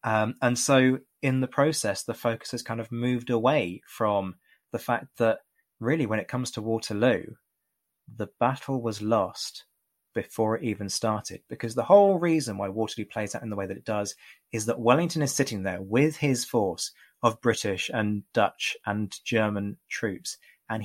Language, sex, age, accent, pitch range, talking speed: English, male, 20-39, British, 110-130 Hz, 180 wpm